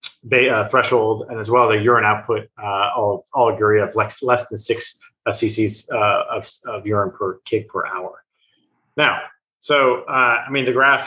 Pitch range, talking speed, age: 105-135 Hz, 185 wpm, 30-49